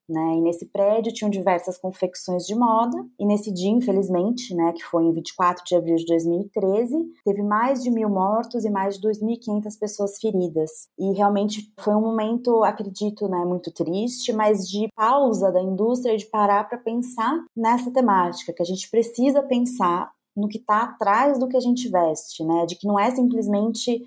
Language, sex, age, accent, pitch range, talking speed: Portuguese, female, 20-39, Brazilian, 175-220 Hz, 180 wpm